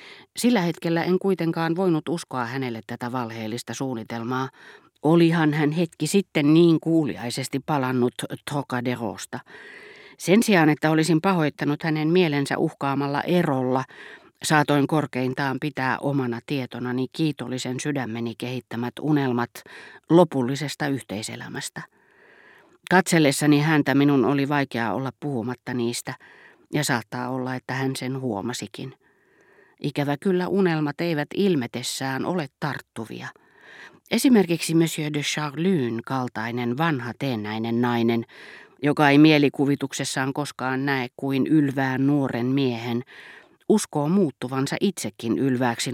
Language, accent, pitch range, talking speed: Finnish, native, 125-155 Hz, 105 wpm